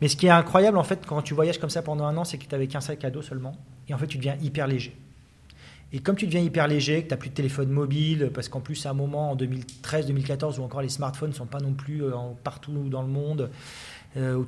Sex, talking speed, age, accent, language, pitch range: male, 280 wpm, 30-49, French, French, 130-150 Hz